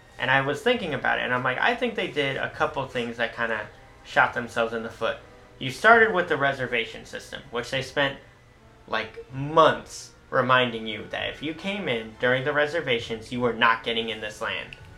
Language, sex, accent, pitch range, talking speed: English, male, American, 120-160 Hz, 210 wpm